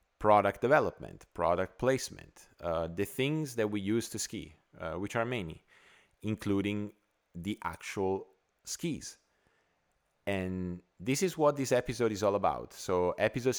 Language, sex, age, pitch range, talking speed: English, male, 30-49, 95-115 Hz, 135 wpm